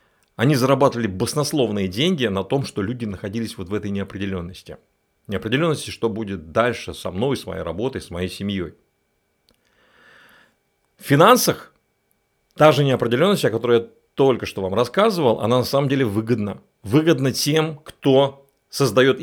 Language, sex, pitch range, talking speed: Russian, male, 100-135 Hz, 145 wpm